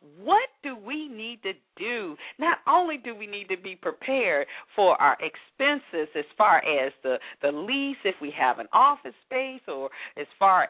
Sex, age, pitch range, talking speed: female, 40-59, 200-305 Hz, 180 wpm